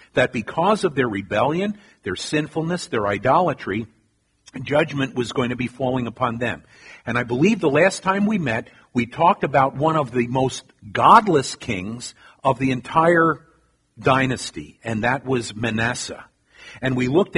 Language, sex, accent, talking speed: Italian, male, American, 155 wpm